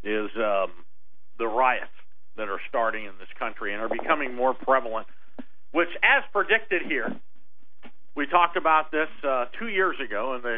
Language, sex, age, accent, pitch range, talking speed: English, male, 50-69, American, 125-175 Hz, 160 wpm